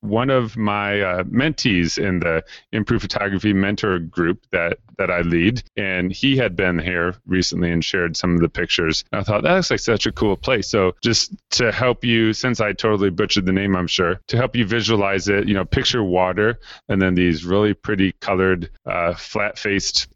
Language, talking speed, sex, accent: English, 195 wpm, male, American